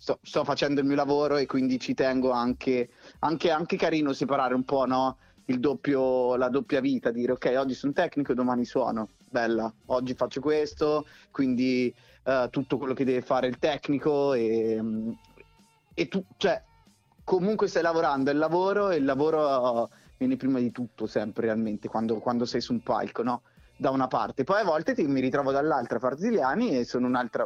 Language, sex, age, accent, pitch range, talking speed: Italian, male, 30-49, native, 125-150 Hz, 190 wpm